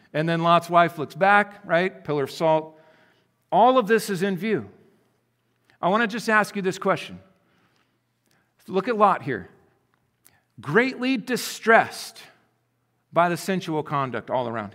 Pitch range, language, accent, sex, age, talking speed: 175-235 Hz, English, American, male, 50-69, 145 wpm